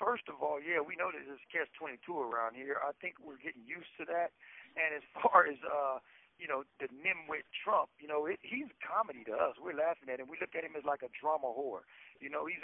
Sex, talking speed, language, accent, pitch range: male, 245 wpm, English, American, 140-180 Hz